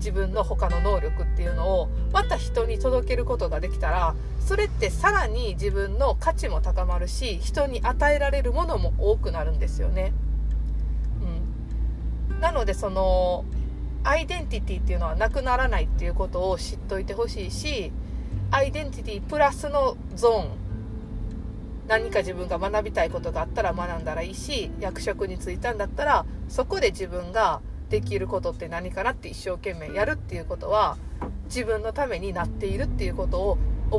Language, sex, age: Japanese, female, 40-59